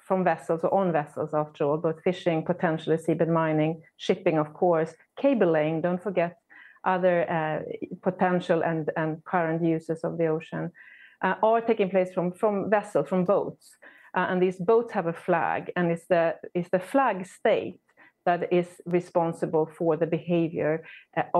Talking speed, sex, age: 165 wpm, female, 30-49